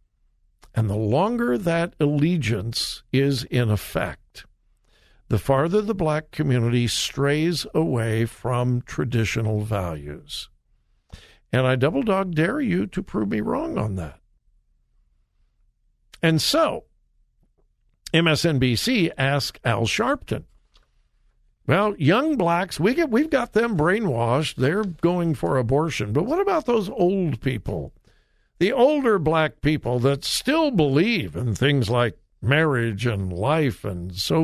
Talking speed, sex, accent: 115 wpm, male, American